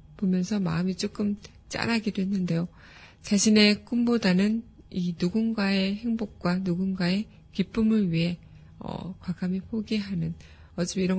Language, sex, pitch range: Korean, female, 175-210 Hz